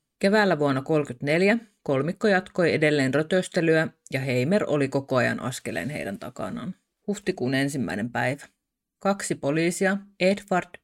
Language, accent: Finnish, native